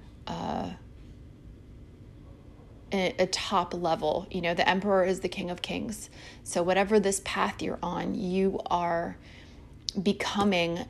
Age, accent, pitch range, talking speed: 30-49, American, 180-205 Hz, 120 wpm